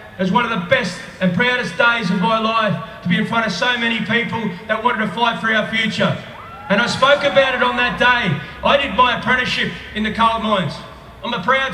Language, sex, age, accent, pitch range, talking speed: English, male, 30-49, Australian, 200-240 Hz, 230 wpm